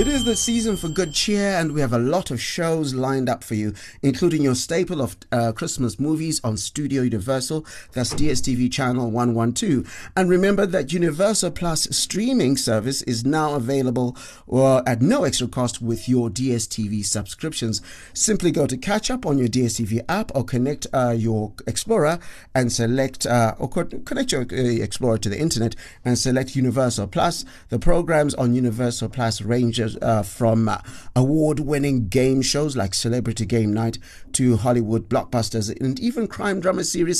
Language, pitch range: English, 115-165 Hz